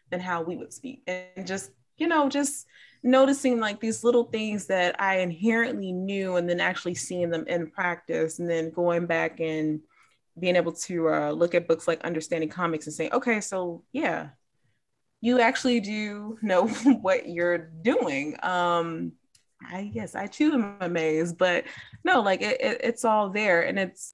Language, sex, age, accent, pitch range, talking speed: English, female, 20-39, American, 165-210 Hz, 175 wpm